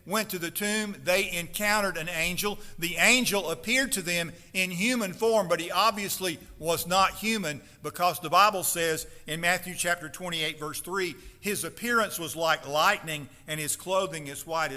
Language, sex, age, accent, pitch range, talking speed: English, male, 50-69, American, 155-205 Hz, 170 wpm